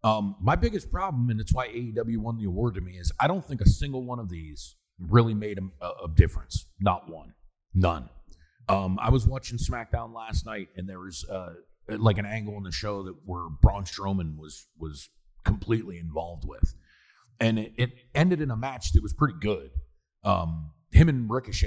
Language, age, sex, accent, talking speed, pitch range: English, 40-59, male, American, 200 wpm, 80-110 Hz